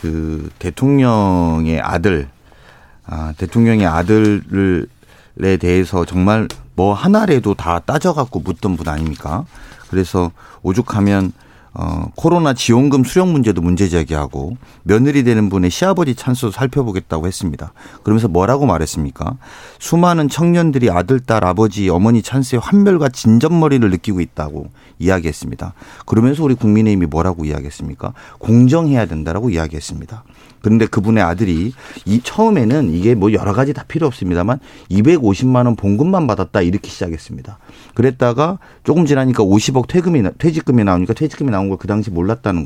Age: 40-59